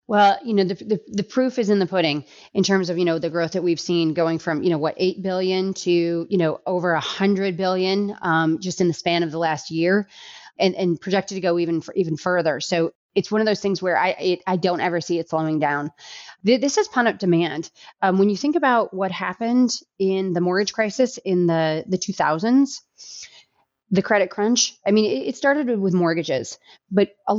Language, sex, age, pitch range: English, female, 30-49, 170-210 Hz